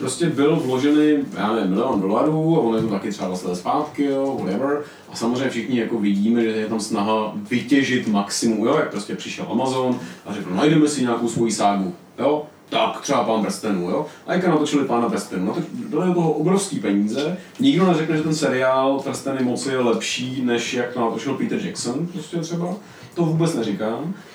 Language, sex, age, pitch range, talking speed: Czech, male, 30-49, 115-160 Hz, 190 wpm